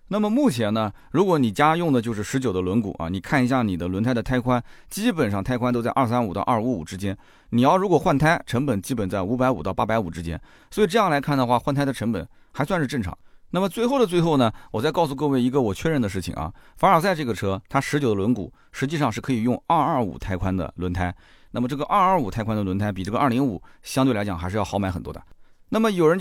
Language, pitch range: Chinese, 100-155 Hz